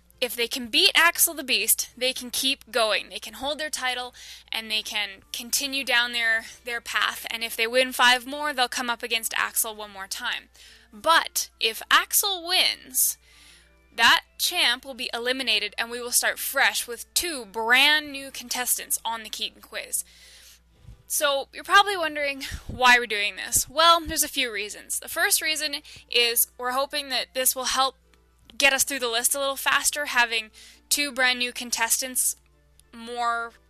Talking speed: 175 wpm